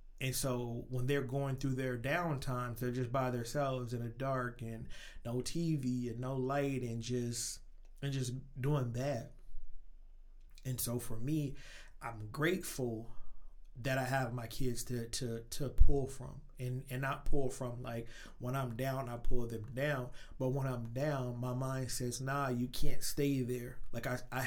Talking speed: 175 wpm